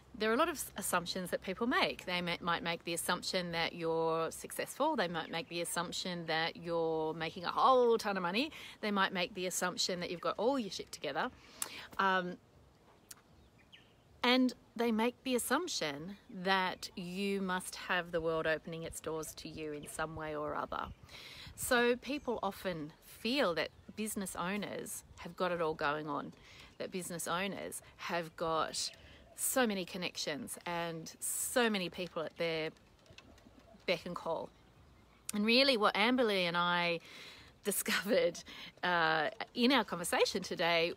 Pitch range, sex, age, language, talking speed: 170-215 Hz, female, 30-49, English, 155 wpm